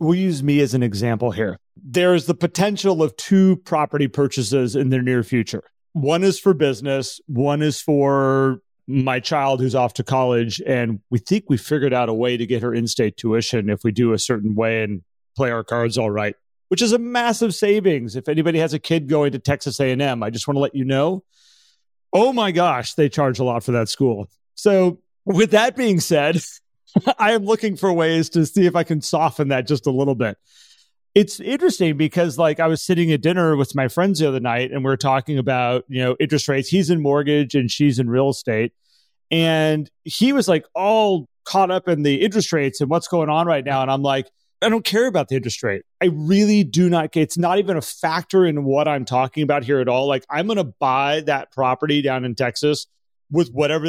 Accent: American